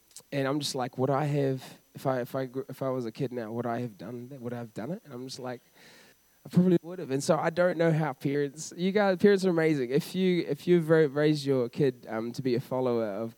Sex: male